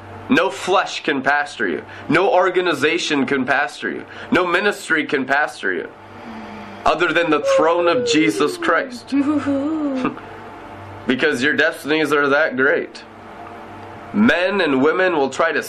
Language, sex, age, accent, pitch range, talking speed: English, male, 20-39, American, 130-185 Hz, 130 wpm